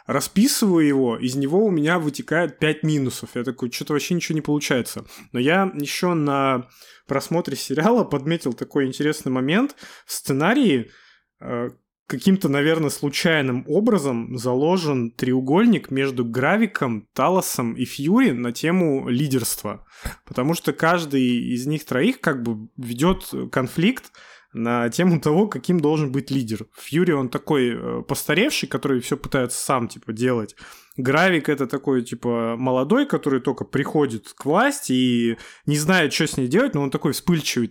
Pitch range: 125-165 Hz